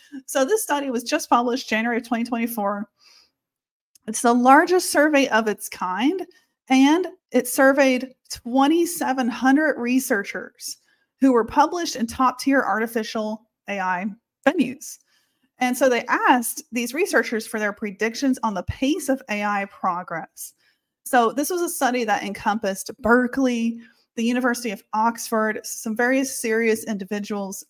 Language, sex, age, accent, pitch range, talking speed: English, female, 30-49, American, 220-280 Hz, 130 wpm